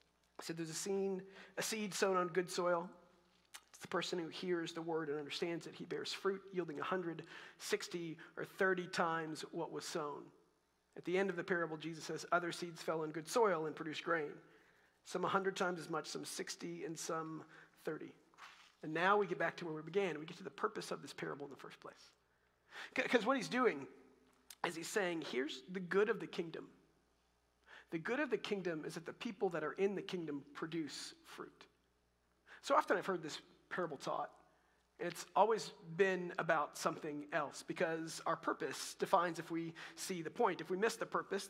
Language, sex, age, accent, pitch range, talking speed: English, male, 40-59, American, 160-195 Hz, 195 wpm